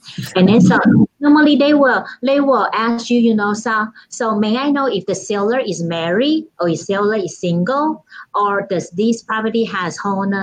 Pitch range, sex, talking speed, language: 190-260 Hz, female, 190 wpm, English